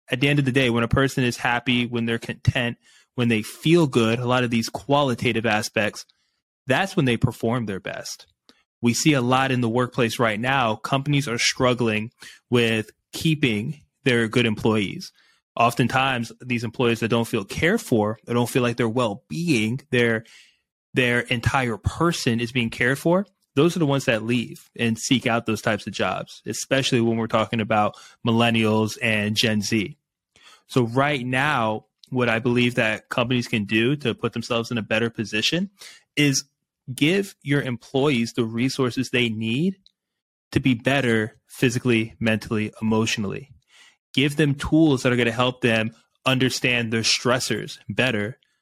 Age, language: 20-39, English